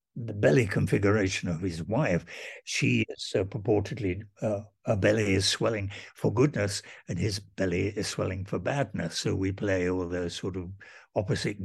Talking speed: 165 wpm